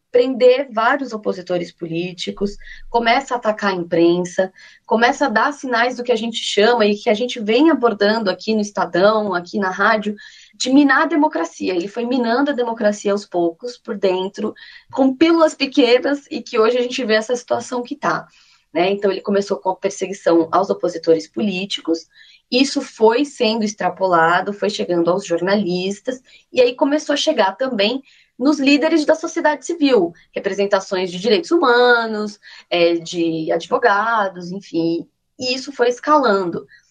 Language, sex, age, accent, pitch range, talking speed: Portuguese, female, 20-39, Brazilian, 185-260 Hz, 155 wpm